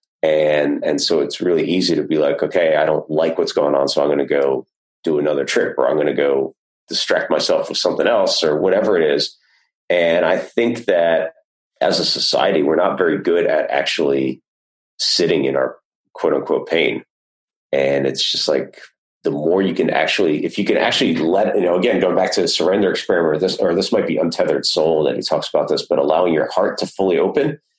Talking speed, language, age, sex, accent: 215 wpm, English, 30-49, male, American